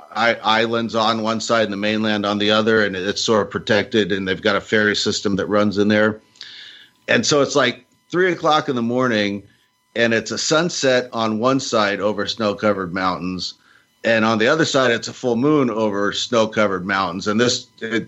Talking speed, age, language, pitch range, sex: 205 wpm, 50-69, English, 100-120 Hz, male